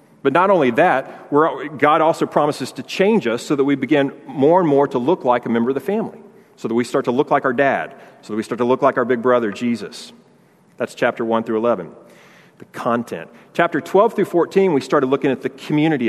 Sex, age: male, 40-59